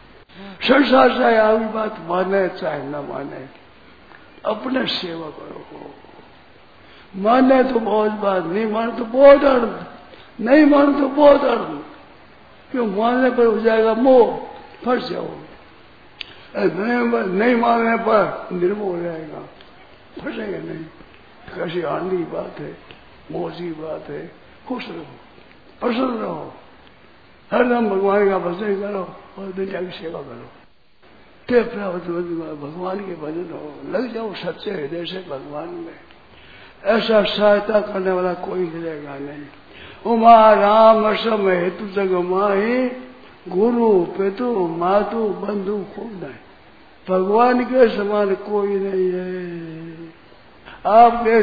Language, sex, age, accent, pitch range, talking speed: Hindi, male, 60-79, native, 185-235 Hz, 110 wpm